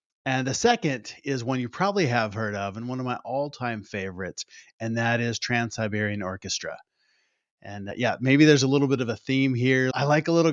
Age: 30-49